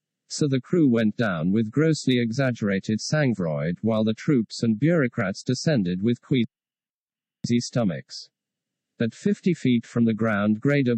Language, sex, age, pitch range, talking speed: English, male, 50-69, 115-145 Hz, 135 wpm